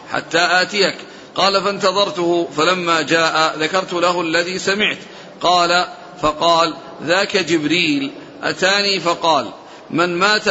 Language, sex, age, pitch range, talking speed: Arabic, male, 50-69, 165-185 Hz, 105 wpm